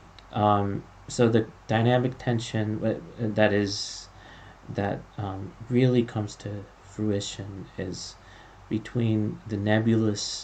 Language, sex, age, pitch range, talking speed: English, male, 30-49, 95-115 Hz, 100 wpm